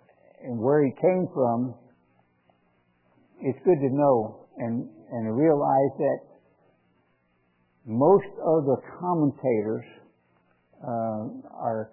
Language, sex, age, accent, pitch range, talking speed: English, male, 60-79, American, 110-150 Hz, 95 wpm